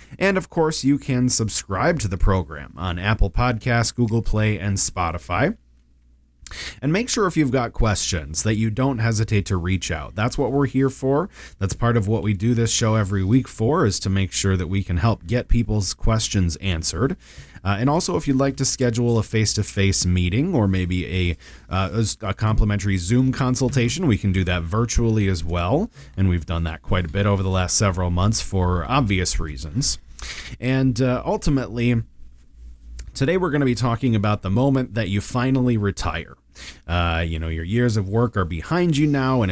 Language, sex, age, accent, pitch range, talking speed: English, male, 30-49, American, 90-125 Hz, 195 wpm